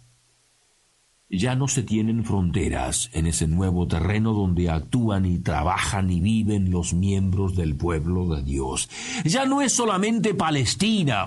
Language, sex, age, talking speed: Spanish, male, 50-69, 140 wpm